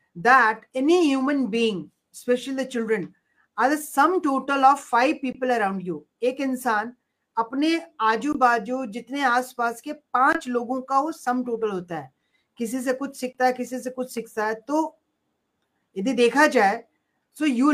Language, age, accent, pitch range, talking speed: Hindi, 40-59, native, 230-270 Hz, 85 wpm